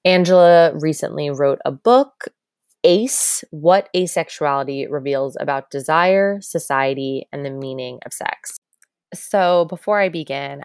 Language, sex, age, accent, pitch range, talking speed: English, female, 20-39, American, 140-180 Hz, 120 wpm